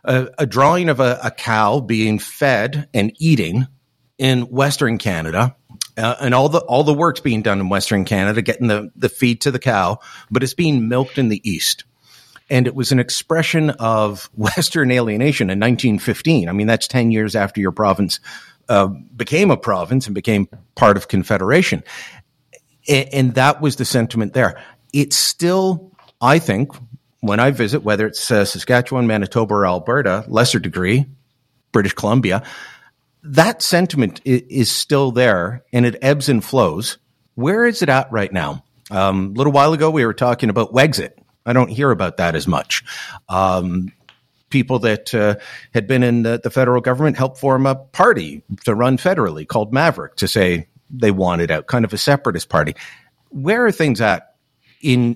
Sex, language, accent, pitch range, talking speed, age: male, English, American, 105-135 Hz, 175 wpm, 50-69